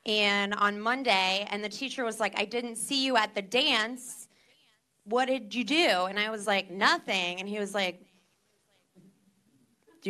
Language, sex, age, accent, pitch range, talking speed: English, female, 20-39, American, 190-240 Hz, 170 wpm